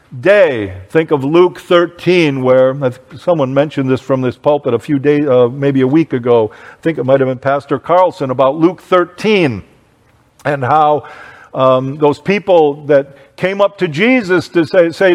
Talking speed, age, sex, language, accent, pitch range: 175 wpm, 50-69, male, English, American, 135-185 Hz